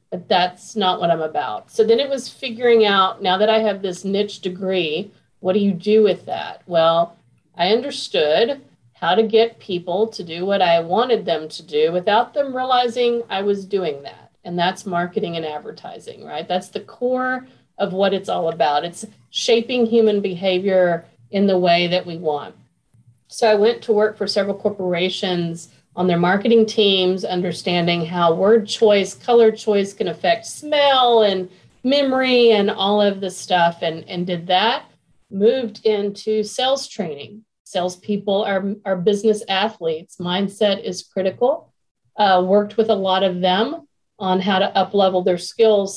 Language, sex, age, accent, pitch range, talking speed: English, female, 40-59, American, 180-220 Hz, 165 wpm